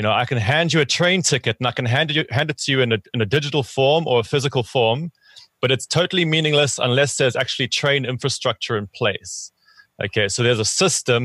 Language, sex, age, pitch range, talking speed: English, male, 30-49, 120-145 Hz, 225 wpm